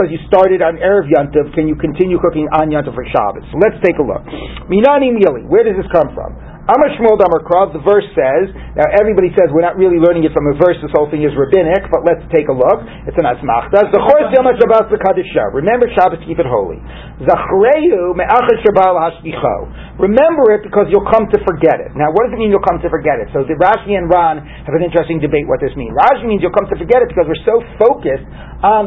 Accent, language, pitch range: American, English, 170-240 Hz